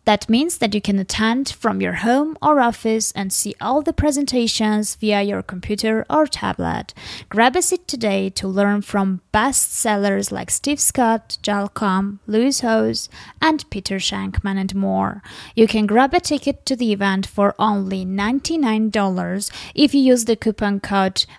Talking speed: 165 wpm